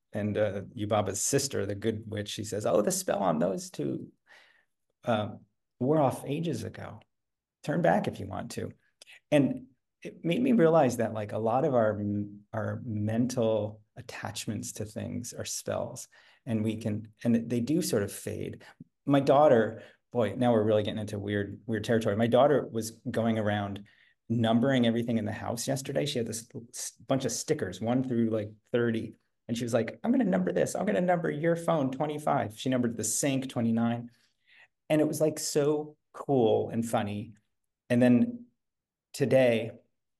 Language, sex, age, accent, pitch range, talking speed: English, male, 30-49, American, 105-130 Hz, 175 wpm